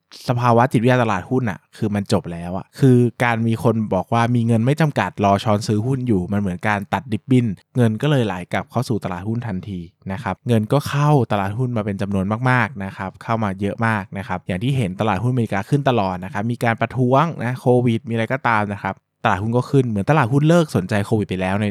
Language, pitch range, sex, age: Thai, 100-130 Hz, male, 20-39